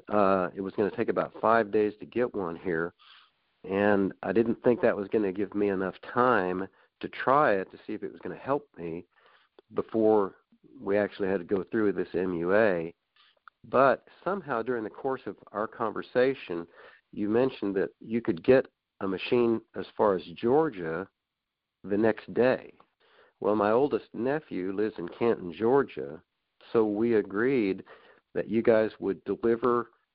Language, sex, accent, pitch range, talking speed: English, male, American, 95-120 Hz, 170 wpm